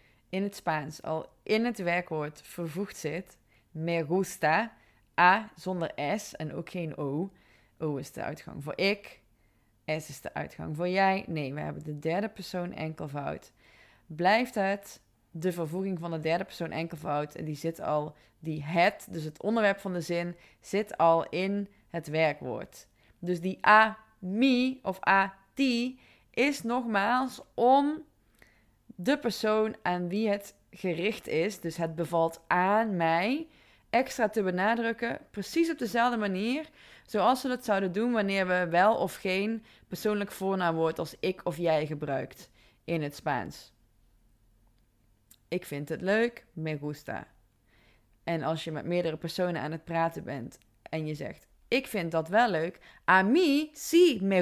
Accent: Dutch